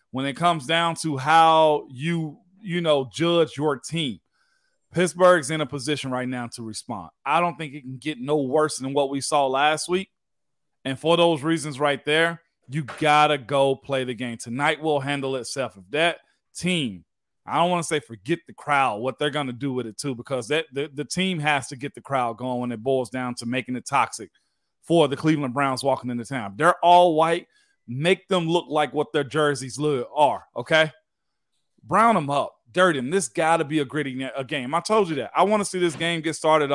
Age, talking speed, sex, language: 40-59, 220 wpm, male, English